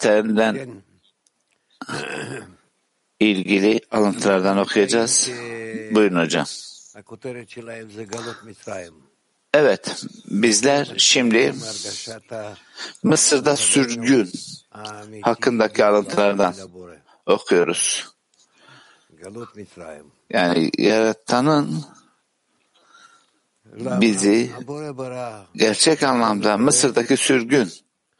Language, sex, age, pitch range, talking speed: Turkish, male, 60-79, 105-125 Hz, 45 wpm